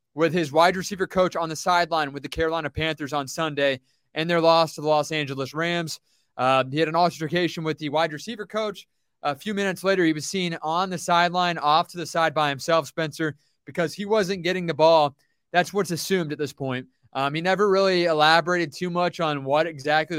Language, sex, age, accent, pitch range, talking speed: English, male, 20-39, American, 150-175 Hz, 210 wpm